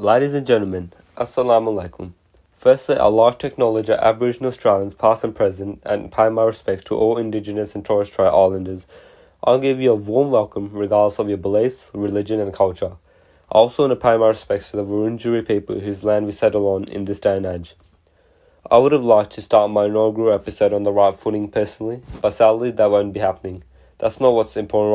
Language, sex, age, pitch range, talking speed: English, male, 20-39, 100-110 Hz, 200 wpm